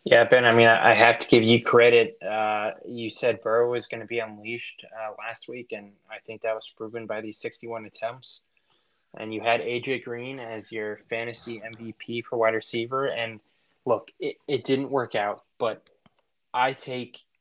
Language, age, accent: English, 20-39, American